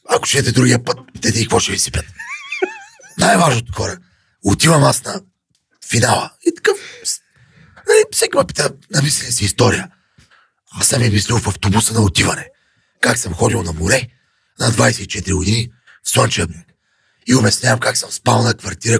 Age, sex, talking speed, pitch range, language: 40-59, male, 160 wpm, 110-145 Hz, Bulgarian